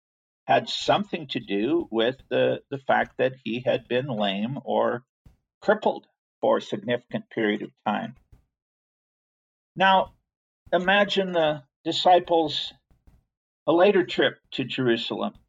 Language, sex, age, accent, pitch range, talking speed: English, male, 50-69, American, 120-140 Hz, 115 wpm